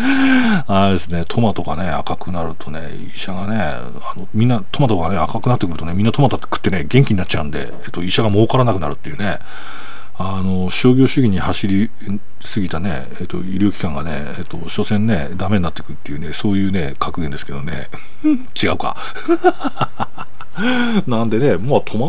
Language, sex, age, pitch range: Japanese, male, 40-59, 90-145 Hz